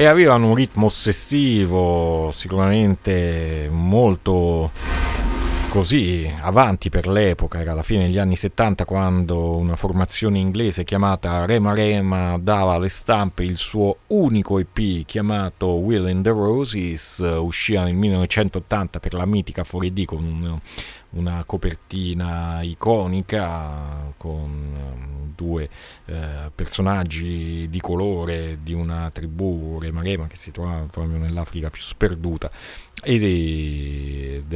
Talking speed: 115 wpm